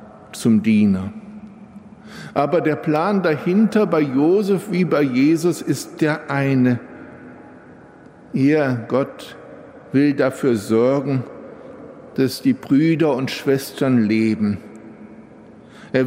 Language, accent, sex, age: German, German, male, 60-79